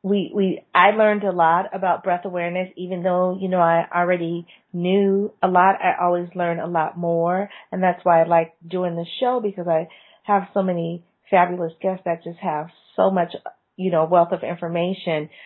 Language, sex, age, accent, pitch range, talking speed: English, female, 30-49, American, 175-195 Hz, 190 wpm